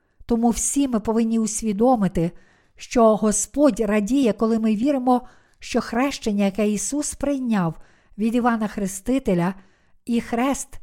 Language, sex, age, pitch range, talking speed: Ukrainian, female, 50-69, 215-255 Hz, 115 wpm